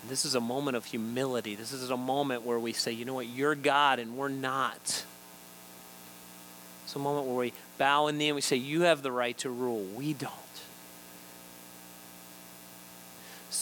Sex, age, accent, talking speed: male, 40-59, American, 180 wpm